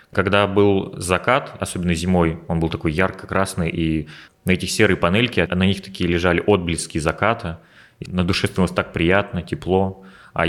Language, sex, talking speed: Russian, male, 155 wpm